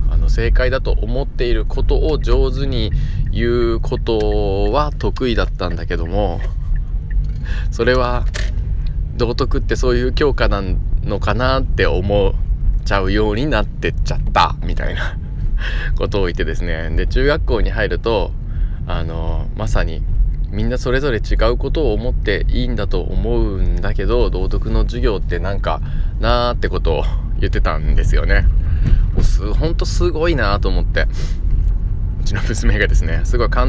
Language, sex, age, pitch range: Japanese, male, 20-39, 80-105 Hz